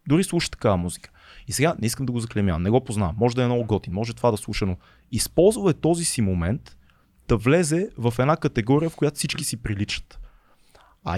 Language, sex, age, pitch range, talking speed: Bulgarian, male, 30-49, 105-135 Hz, 210 wpm